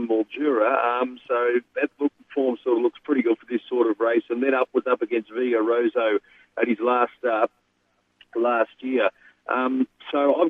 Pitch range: 120-145 Hz